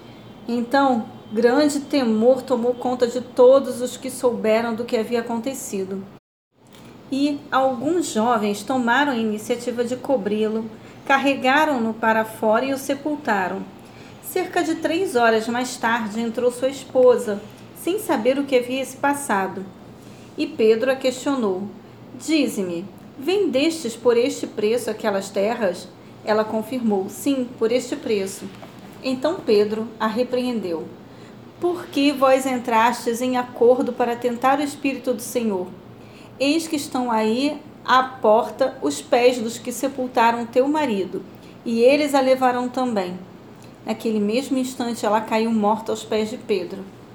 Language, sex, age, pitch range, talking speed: Portuguese, female, 40-59, 220-265 Hz, 135 wpm